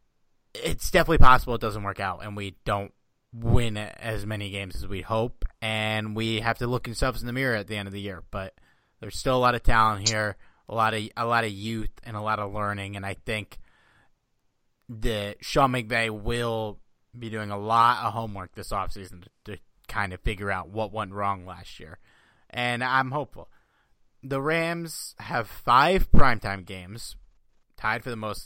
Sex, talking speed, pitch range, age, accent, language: male, 190 wpm, 100-125 Hz, 30-49, American, English